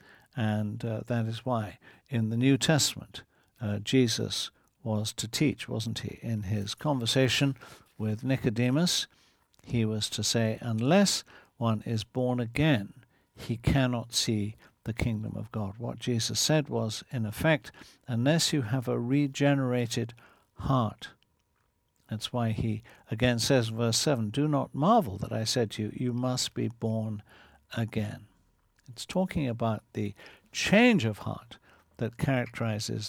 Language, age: English, 60-79